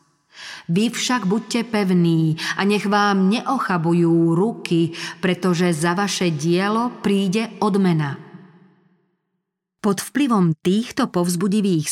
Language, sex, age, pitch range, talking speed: Slovak, female, 40-59, 175-205 Hz, 95 wpm